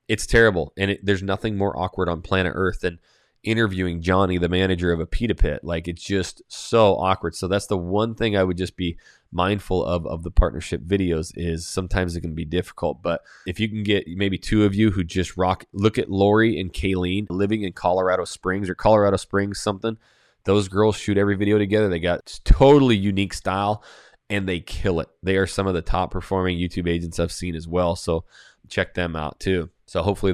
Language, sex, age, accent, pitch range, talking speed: English, male, 20-39, American, 90-105 Hz, 210 wpm